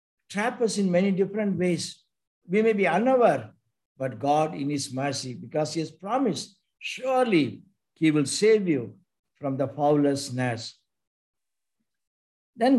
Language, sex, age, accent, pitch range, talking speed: English, male, 60-79, Indian, 140-195 Hz, 130 wpm